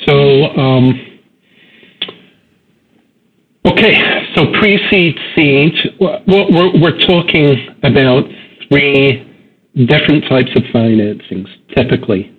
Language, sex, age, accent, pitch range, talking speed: English, male, 50-69, American, 120-145 Hz, 80 wpm